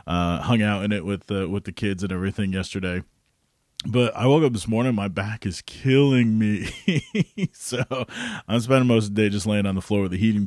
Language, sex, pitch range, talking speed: English, male, 100-140 Hz, 225 wpm